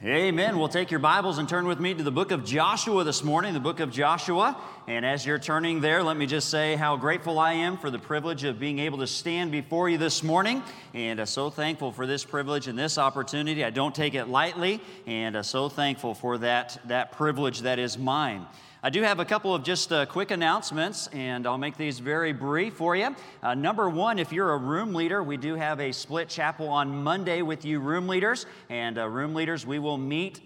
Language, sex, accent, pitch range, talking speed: English, male, American, 135-170 Hz, 230 wpm